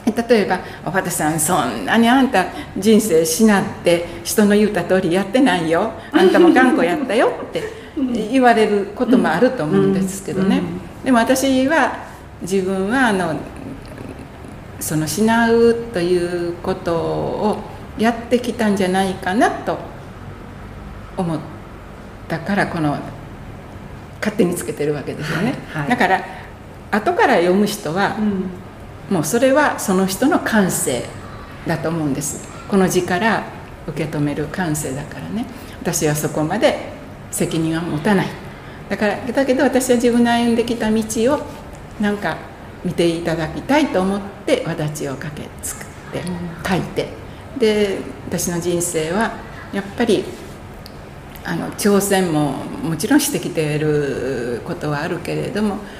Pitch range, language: 160-230 Hz, Japanese